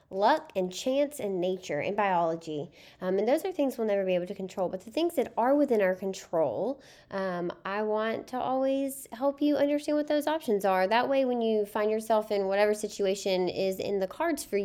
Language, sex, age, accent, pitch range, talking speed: English, female, 10-29, American, 190-265 Hz, 215 wpm